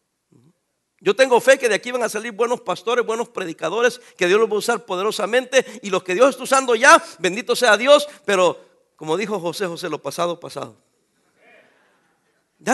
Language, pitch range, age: English, 210-290 Hz, 50-69